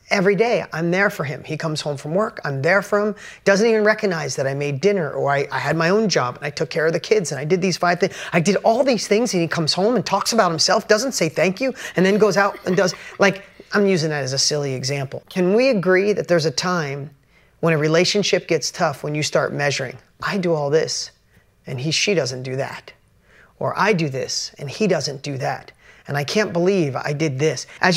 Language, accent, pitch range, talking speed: English, American, 160-225 Hz, 250 wpm